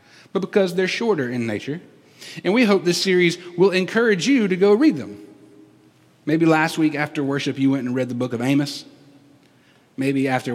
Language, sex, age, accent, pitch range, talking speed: English, male, 30-49, American, 140-190 Hz, 190 wpm